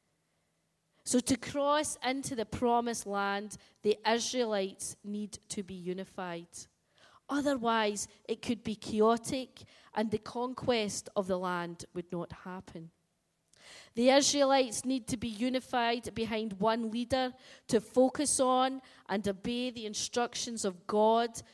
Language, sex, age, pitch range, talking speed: English, female, 20-39, 205-255 Hz, 125 wpm